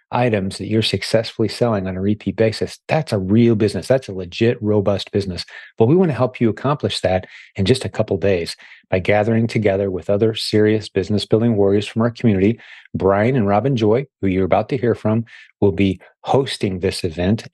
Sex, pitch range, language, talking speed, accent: male, 100-115 Hz, English, 200 wpm, American